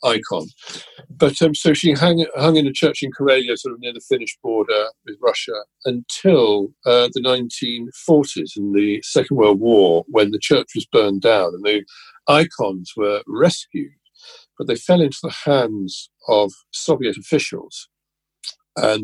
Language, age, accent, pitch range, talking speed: English, 50-69, British, 110-180 Hz, 160 wpm